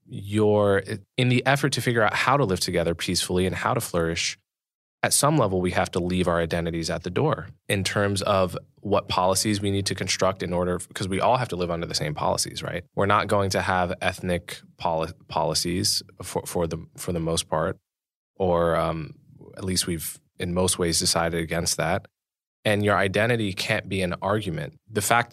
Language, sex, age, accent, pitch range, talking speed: English, male, 20-39, American, 90-105 Hz, 200 wpm